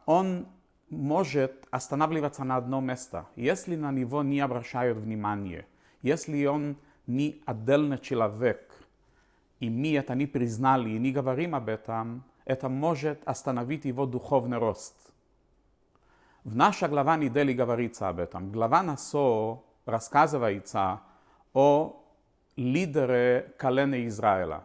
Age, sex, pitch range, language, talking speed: 40-59, male, 110-140 Hz, Russian, 115 wpm